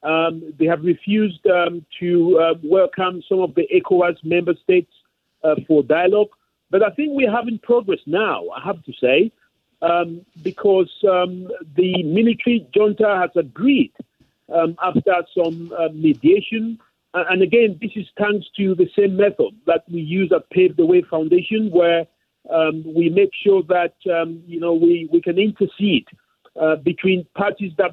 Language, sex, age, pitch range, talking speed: English, male, 50-69, 170-220 Hz, 160 wpm